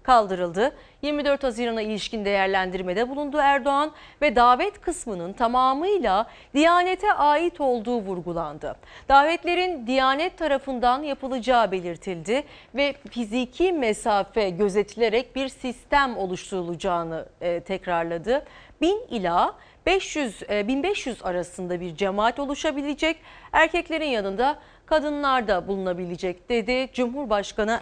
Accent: native